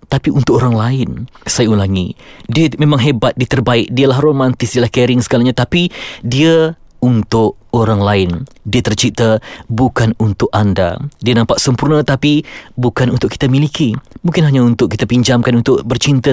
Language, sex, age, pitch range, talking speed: Malay, male, 20-39, 115-140 Hz, 155 wpm